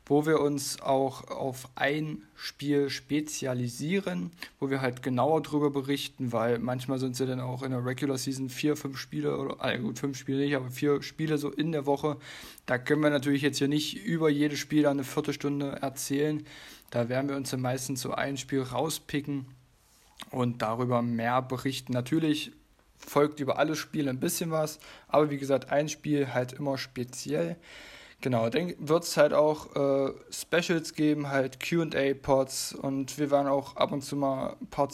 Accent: German